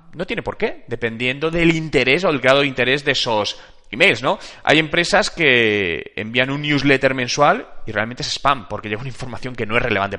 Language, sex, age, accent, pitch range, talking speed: Spanish, male, 30-49, Spanish, 120-180 Hz, 205 wpm